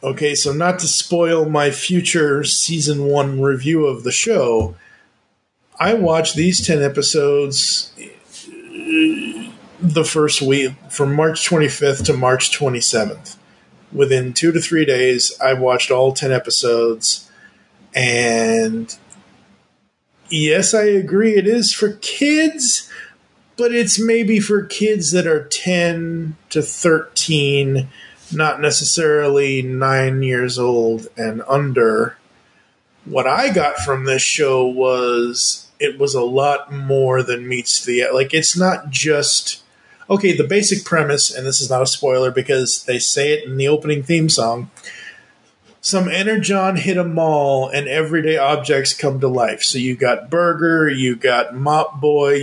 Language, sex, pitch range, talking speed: English, male, 130-170 Hz, 135 wpm